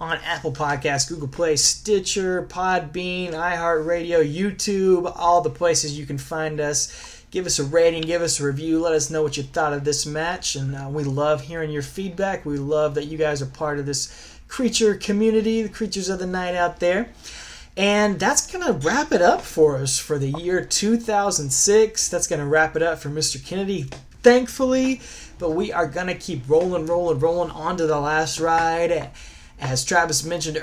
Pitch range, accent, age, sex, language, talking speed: 150-185 Hz, American, 20-39, male, English, 190 wpm